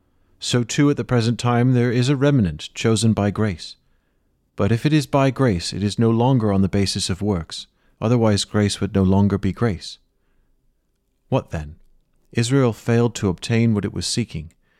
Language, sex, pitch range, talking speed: English, male, 95-115 Hz, 185 wpm